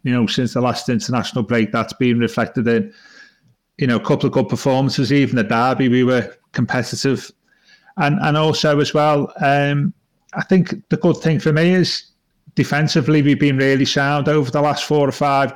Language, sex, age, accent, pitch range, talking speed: English, male, 40-59, British, 120-145 Hz, 190 wpm